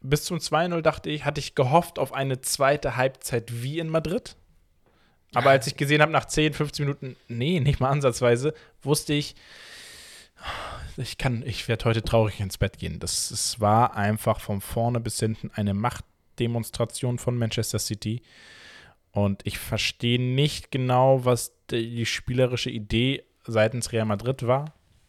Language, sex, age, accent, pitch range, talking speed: German, male, 20-39, German, 110-135 Hz, 155 wpm